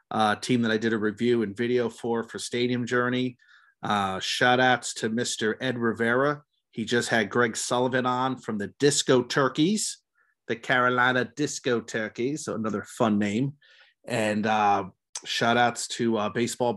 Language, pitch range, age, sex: English, 115-130 Hz, 30-49, male